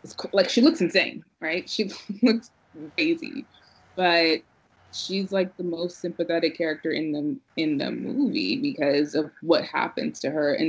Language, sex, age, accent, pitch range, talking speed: English, female, 20-39, American, 160-225 Hz, 165 wpm